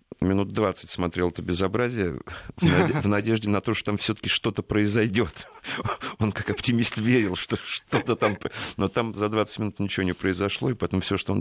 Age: 50-69